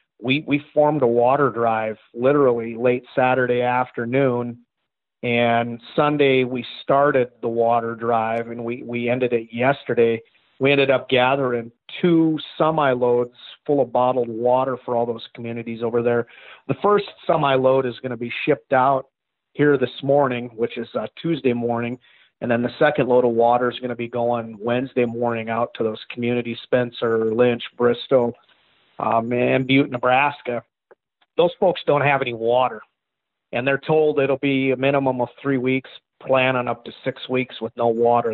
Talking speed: 165 wpm